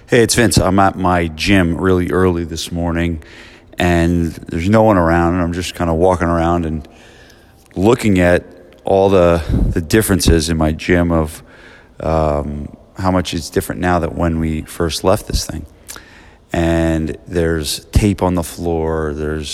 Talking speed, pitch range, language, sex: 165 wpm, 80-95 Hz, English, male